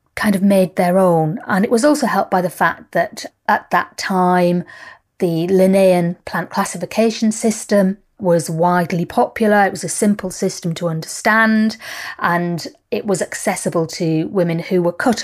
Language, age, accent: English, 40-59, British